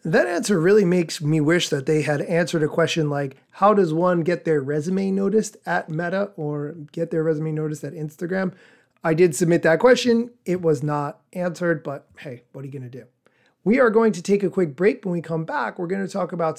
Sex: male